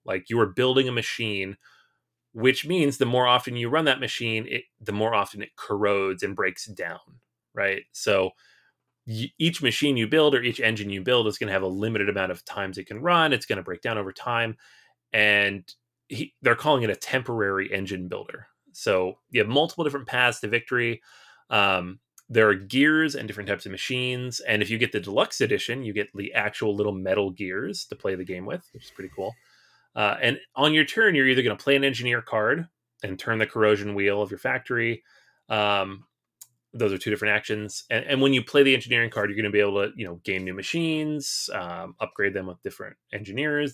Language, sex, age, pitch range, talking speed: English, male, 30-49, 100-130 Hz, 215 wpm